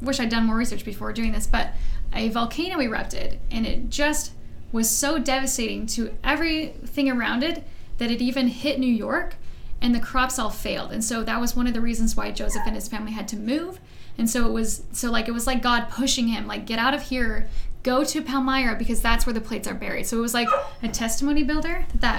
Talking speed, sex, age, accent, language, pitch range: 225 wpm, female, 10-29, American, English, 225-265 Hz